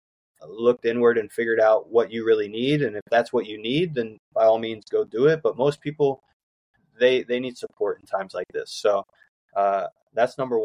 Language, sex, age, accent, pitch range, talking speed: English, male, 20-39, American, 105-130 Hz, 210 wpm